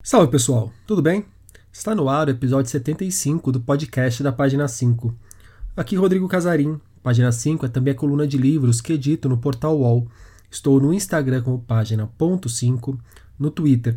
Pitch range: 120-165 Hz